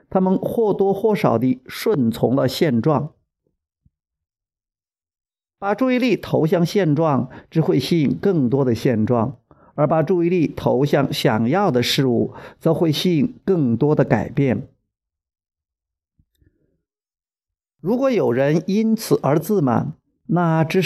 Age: 50-69